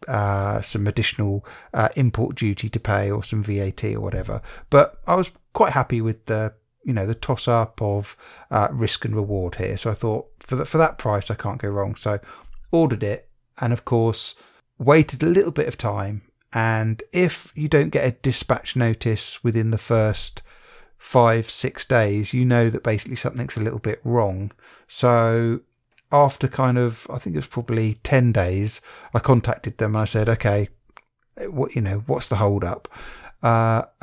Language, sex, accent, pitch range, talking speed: English, male, British, 110-130 Hz, 185 wpm